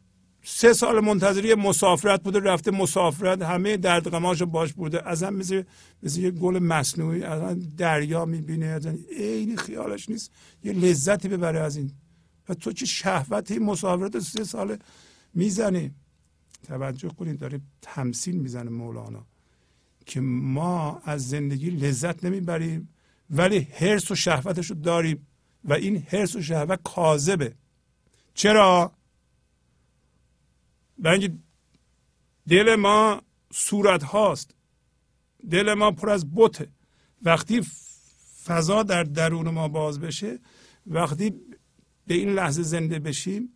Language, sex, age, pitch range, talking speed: Persian, male, 50-69, 150-190 Hz, 115 wpm